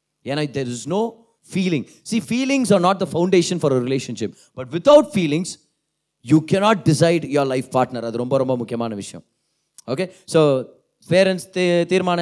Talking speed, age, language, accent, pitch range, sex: 165 wpm, 30-49, Tamil, native, 140-190 Hz, male